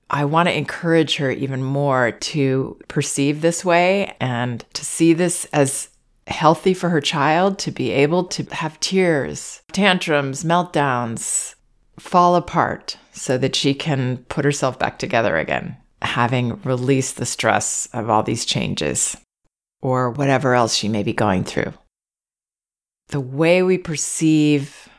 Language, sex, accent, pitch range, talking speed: English, female, American, 135-170 Hz, 140 wpm